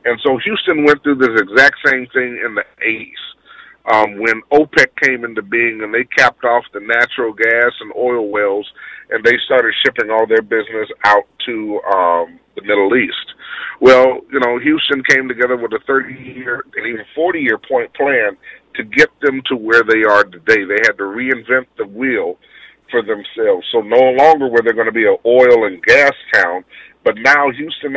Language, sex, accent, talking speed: English, male, American, 190 wpm